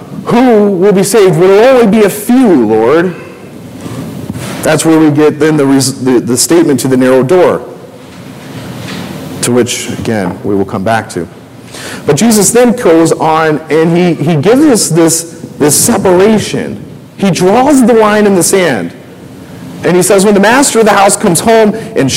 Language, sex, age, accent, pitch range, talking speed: English, male, 40-59, American, 120-190 Hz, 175 wpm